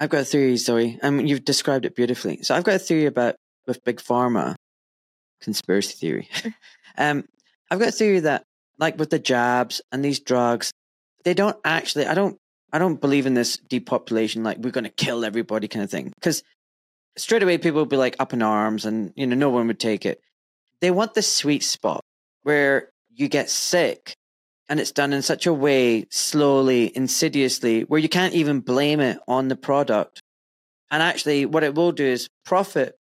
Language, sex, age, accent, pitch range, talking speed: English, male, 20-39, British, 120-155 Hz, 195 wpm